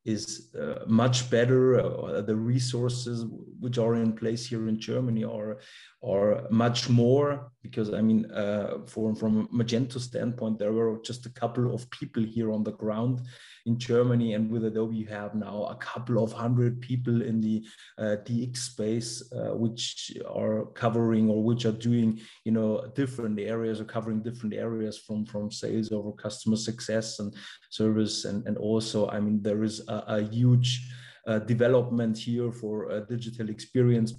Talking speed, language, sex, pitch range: 170 wpm, English, male, 110-120 Hz